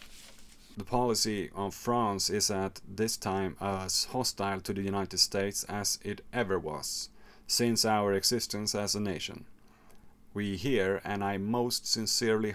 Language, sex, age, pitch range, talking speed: English, male, 30-49, 105-135 Hz, 145 wpm